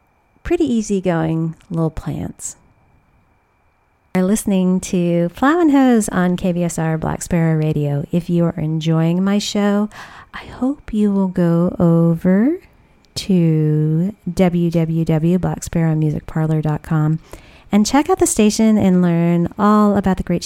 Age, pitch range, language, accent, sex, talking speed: 30-49, 160-200 Hz, English, American, female, 125 wpm